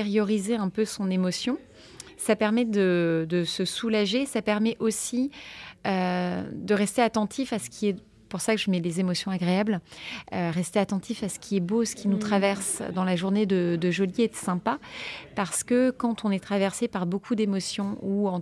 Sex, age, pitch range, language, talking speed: female, 30-49, 180-215 Hz, French, 200 wpm